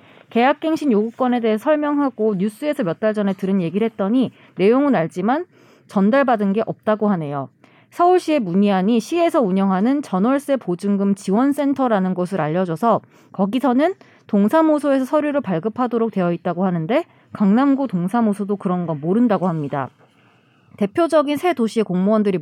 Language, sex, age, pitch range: Korean, female, 30-49, 190-275 Hz